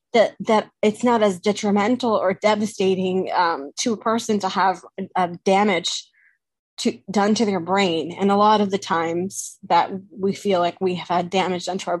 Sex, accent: female, American